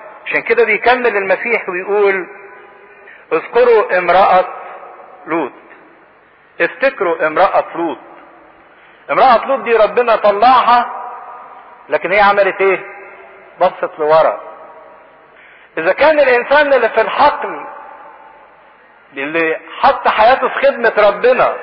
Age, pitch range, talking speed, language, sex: 50-69, 195-260 Hz, 95 wpm, English, male